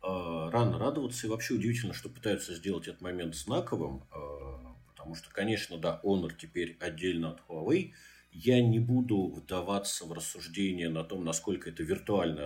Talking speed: 150 wpm